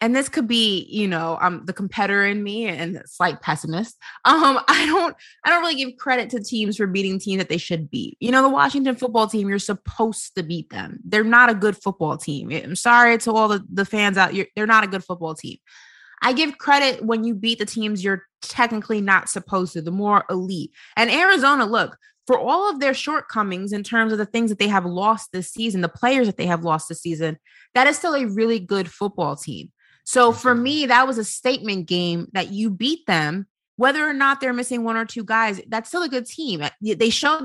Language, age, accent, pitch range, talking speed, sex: English, 20-39, American, 185-245 Hz, 230 wpm, female